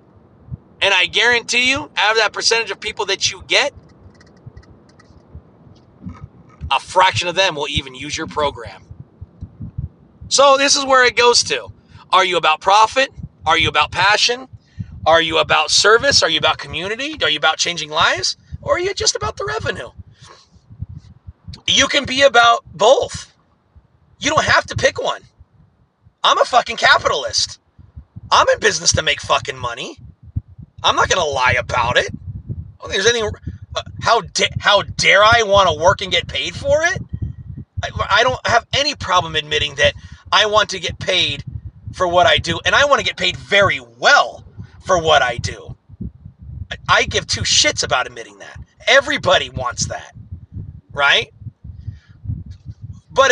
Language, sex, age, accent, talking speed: English, male, 30-49, American, 165 wpm